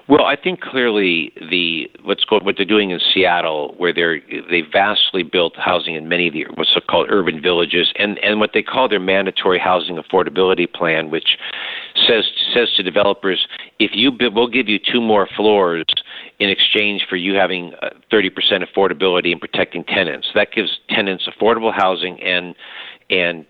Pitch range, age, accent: 90-115 Hz, 50-69, American